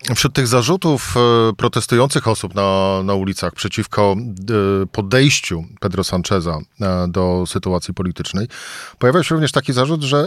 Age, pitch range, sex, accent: 40-59, 105-130 Hz, male, native